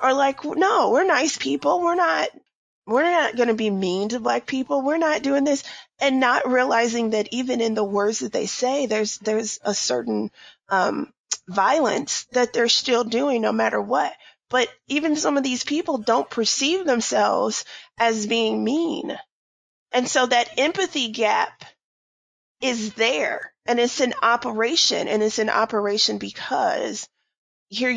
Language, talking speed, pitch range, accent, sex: English, 155 wpm, 205-260 Hz, American, female